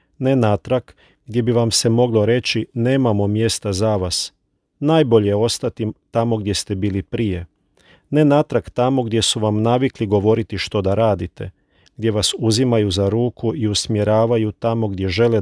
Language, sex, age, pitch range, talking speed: Croatian, male, 40-59, 100-120 Hz, 160 wpm